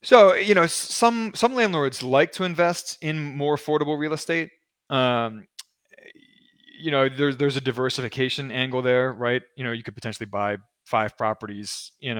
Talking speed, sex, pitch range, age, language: 160 wpm, male, 110-145 Hz, 20-39, English